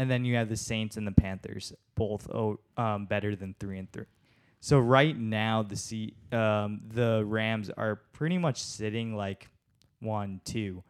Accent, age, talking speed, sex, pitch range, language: American, 20-39, 170 wpm, male, 100-115 Hz, English